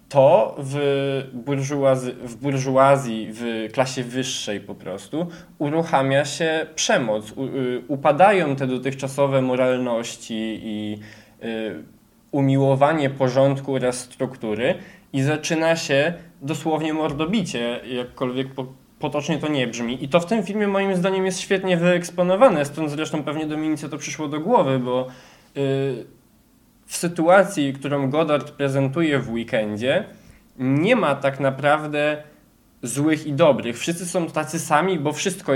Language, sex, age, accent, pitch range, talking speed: Polish, male, 20-39, native, 130-155 Hz, 120 wpm